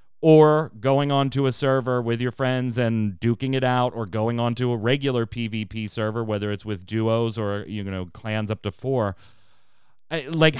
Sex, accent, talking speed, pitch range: male, American, 175 wpm, 105-140 Hz